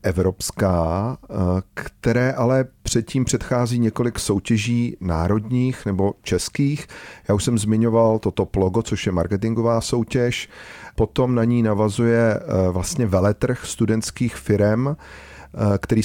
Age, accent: 40-59, native